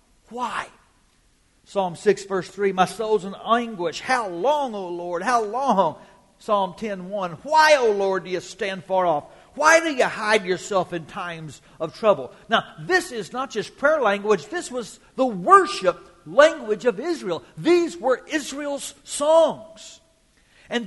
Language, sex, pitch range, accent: English, male, 160-255 Hz, American